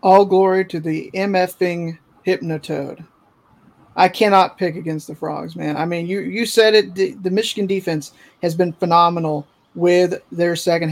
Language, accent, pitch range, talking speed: English, American, 165-190 Hz, 160 wpm